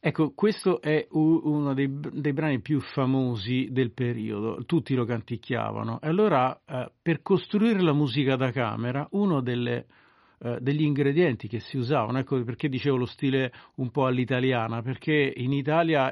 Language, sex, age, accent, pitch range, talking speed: Italian, male, 50-69, native, 125-155 Hz, 150 wpm